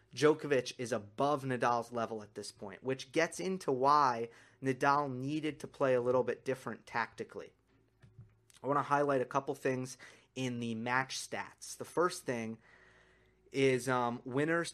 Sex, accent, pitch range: male, American, 125-155 Hz